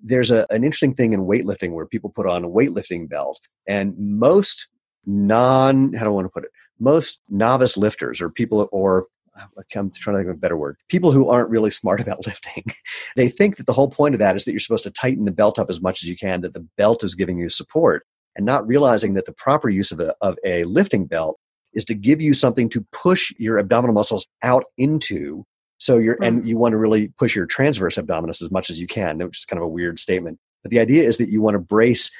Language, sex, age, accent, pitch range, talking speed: English, male, 30-49, American, 95-120 Hz, 240 wpm